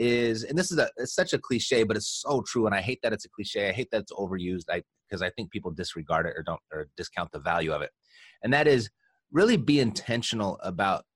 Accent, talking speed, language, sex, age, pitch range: American, 255 wpm, English, male, 30-49, 90-115 Hz